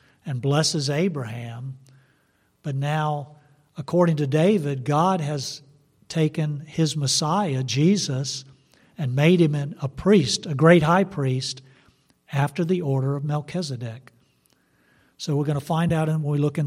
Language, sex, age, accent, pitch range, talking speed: English, male, 50-69, American, 130-155 Hz, 135 wpm